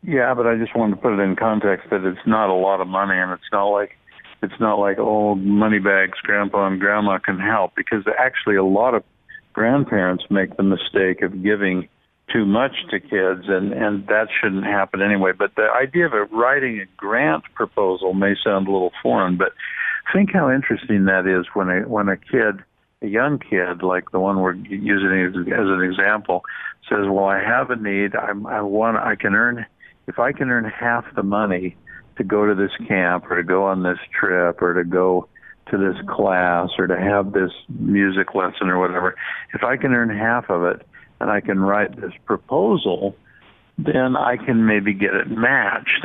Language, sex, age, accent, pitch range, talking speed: English, male, 60-79, American, 95-105 Hz, 200 wpm